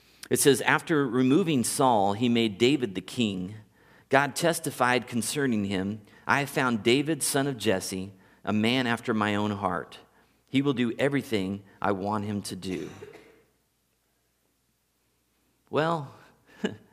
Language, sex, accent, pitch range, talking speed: English, male, American, 105-140 Hz, 130 wpm